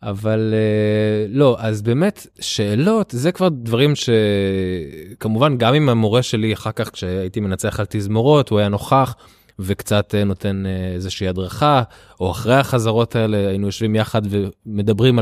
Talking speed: 140 wpm